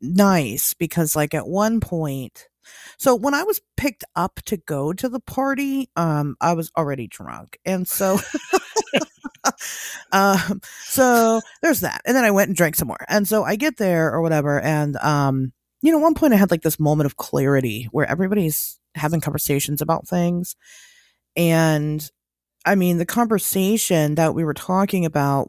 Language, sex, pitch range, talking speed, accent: English, female, 145-205 Hz, 170 wpm, American